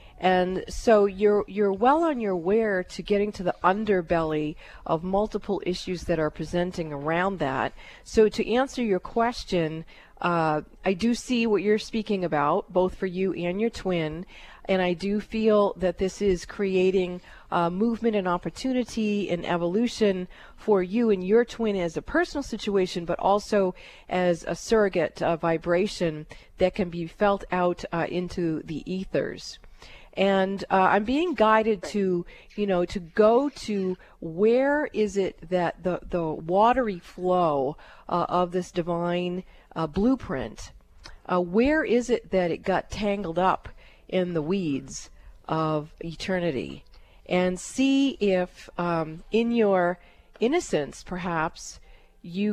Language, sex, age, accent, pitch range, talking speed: English, female, 40-59, American, 175-210 Hz, 145 wpm